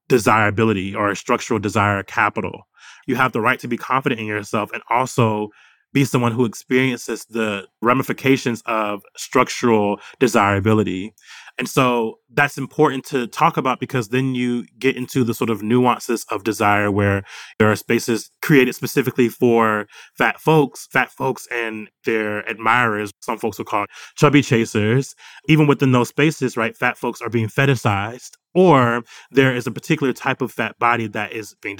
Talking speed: 160 wpm